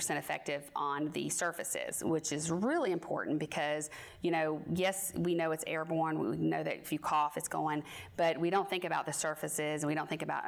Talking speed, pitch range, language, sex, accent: 205 wpm, 150-180 Hz, English, female, American